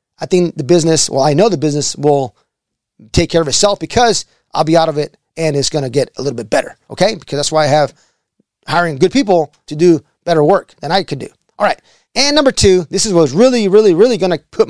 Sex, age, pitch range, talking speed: male, 30-49, 150-200 Hz, 245 wpm